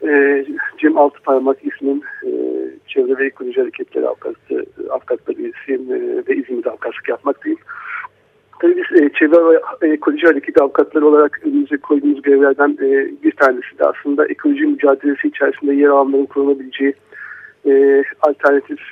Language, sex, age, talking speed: Turkish, male, 50-69, 110 wpm